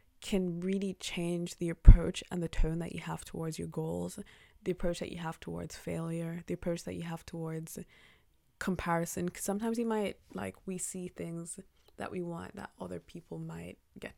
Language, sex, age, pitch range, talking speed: English, female, 20-39, 160-185 Hz, 185 wpm